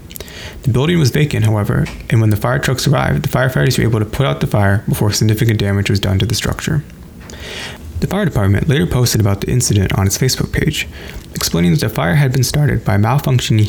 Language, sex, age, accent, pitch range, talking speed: English, male, 20-39, American, 100-135 Hz, 220 wpm